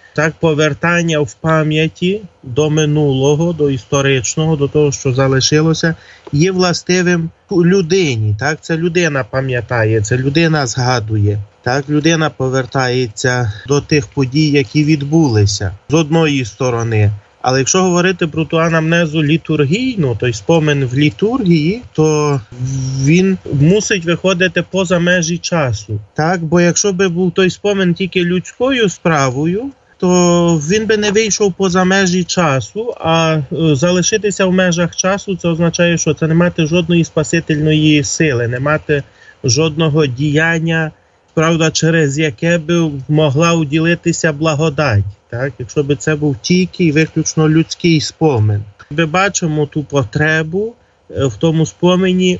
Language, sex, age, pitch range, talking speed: Ukrainian, male, 30-49, 140-175 Hz, 130 wpm